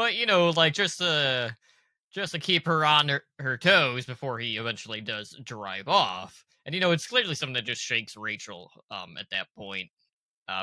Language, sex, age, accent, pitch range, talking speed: English, male, 20-39, American, 110-135 Hz, 200 wpm